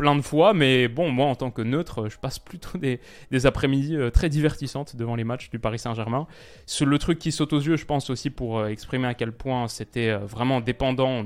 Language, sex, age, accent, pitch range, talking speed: French, male, 20-39, French, 115-145 Hz, 225 wpm